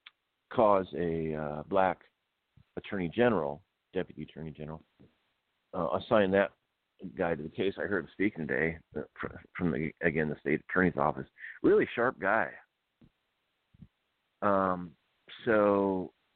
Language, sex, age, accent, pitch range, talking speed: English, male, 50-69, American, 85-105 Hz, 120 wpm